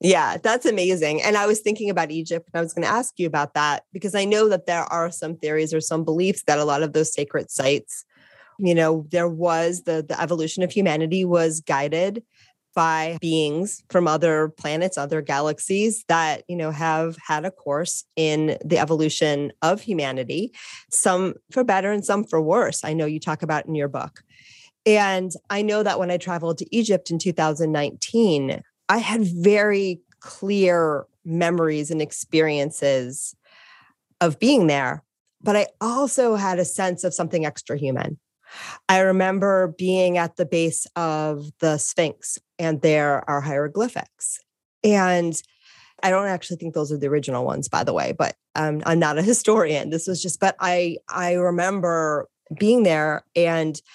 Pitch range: 155-190 Hz